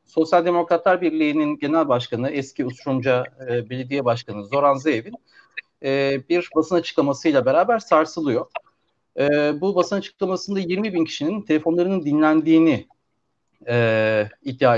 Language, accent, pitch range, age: Turkish, native, 120-160 Hz, 40-59